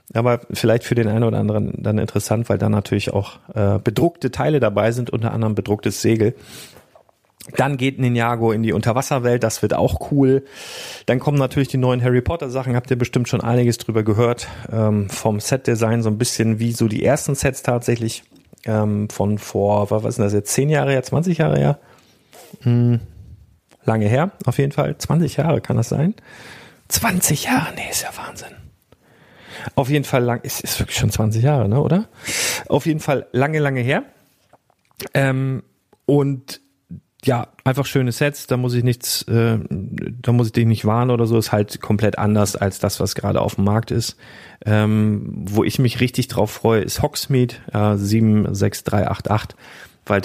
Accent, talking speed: German, 175 wpm